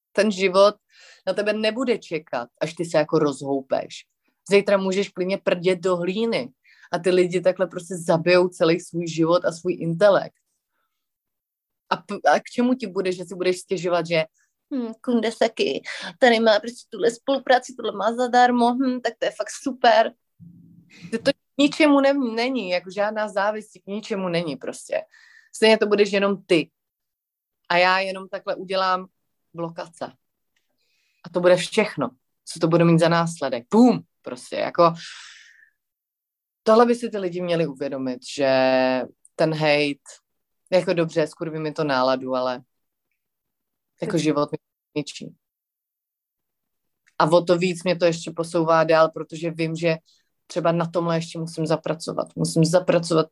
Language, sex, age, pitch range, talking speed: Slovak, female, 30-49, 160-215 Hz, 145 wpm